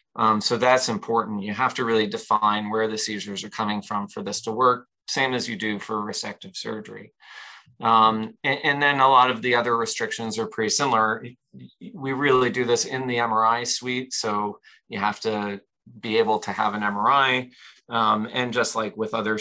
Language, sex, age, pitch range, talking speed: English, male, 30-49, 105-120 Hz, 195 wpm